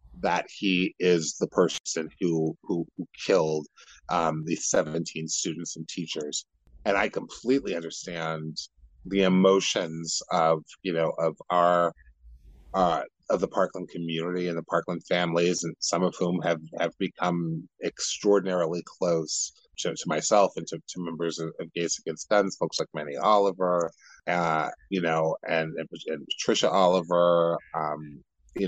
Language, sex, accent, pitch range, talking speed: English, male, American, 80-90 Hz, 145 wpm